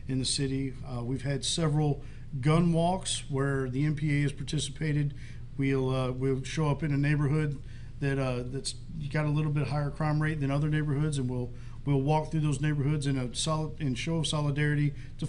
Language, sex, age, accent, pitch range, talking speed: English, male, 50-69, American, 130-155 Hz, 195 wpm